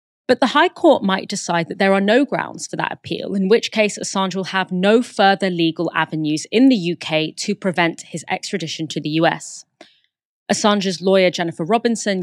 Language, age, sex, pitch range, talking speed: English, 30-49, female, 175-210 Hz, 185 wpm